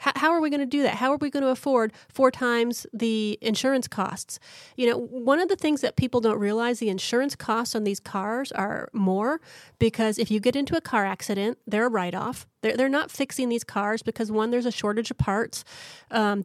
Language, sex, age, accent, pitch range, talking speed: English, female, 30-49, American, 210-245 Hz, 220 wpm